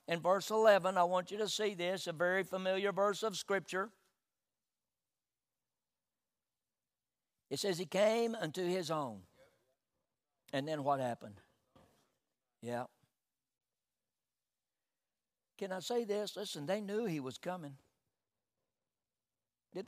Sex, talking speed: male, 115 wpm